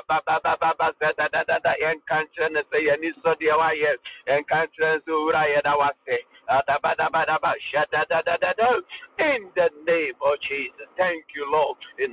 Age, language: 60-79, English